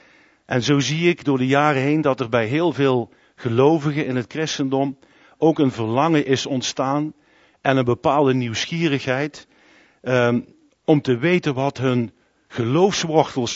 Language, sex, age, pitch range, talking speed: Dutch, male, 50-69, 120-140 Hz, 145 wpm